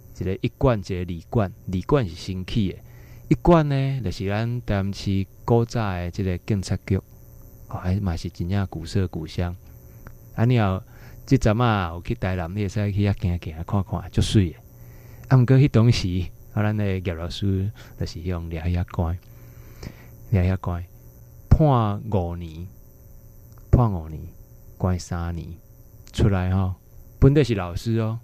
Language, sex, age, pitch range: Chinese, male, 20-39, 90-115 Hz